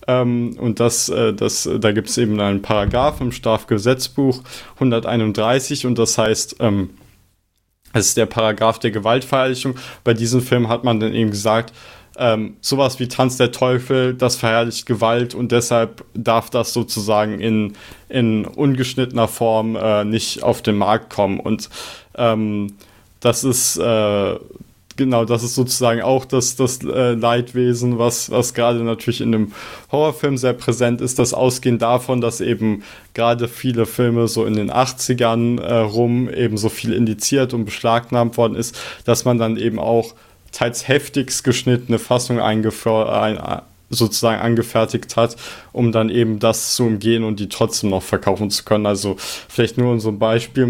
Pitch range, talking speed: 110-125 Hz, 160 wpm